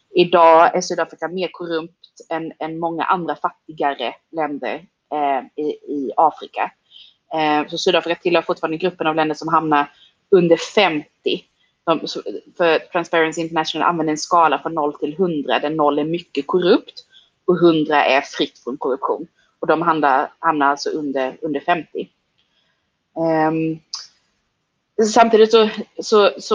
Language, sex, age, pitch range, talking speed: English, female, 30-49, 160-210 Hz, 140 wpm